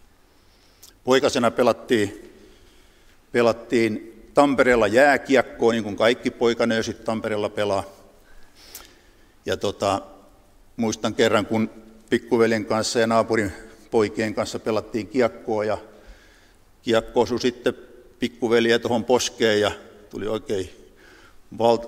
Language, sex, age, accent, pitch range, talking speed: Finnish, male, 60-79, native, 105-125 Hz, 95 wpm